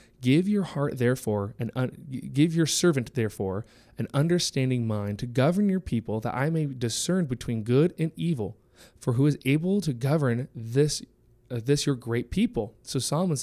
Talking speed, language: 170 wpm, English